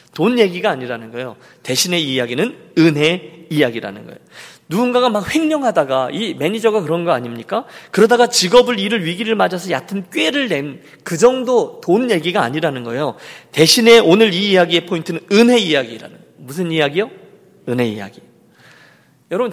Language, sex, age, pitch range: Korean, male, 40-59, 145-220 Hz